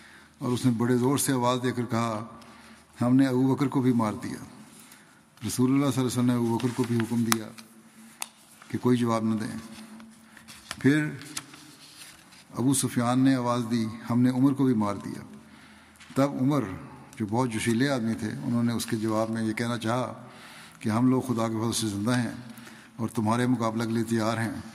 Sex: male